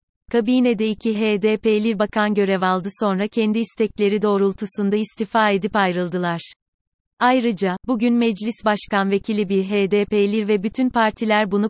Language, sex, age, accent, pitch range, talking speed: Turkish, female, 30-49, native, 195-225 Hz, 125 wpm